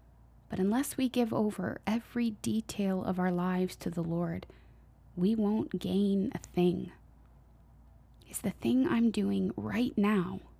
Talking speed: 140 wpm